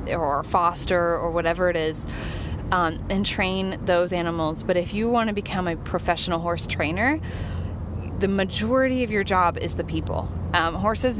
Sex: female